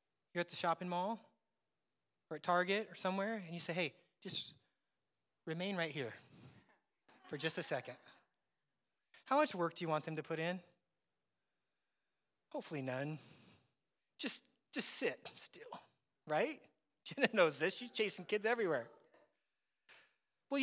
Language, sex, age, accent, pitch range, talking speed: English, male, 30-49, American, 155-225 Hz, 135 wpm